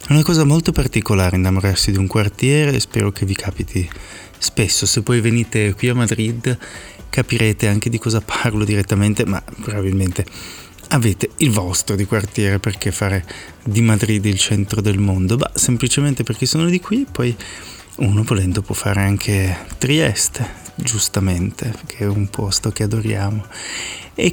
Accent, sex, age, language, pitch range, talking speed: native, male, 30-49, Italian, 100-125 Hz, 155 wpm